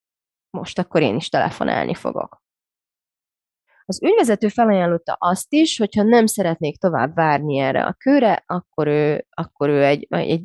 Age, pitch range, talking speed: 20-39, 155-225 Hz, 145 wpm